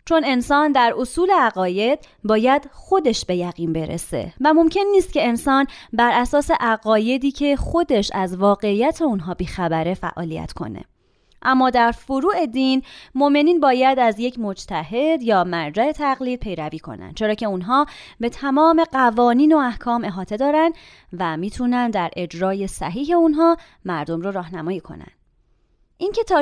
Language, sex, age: Persian, female, 30-49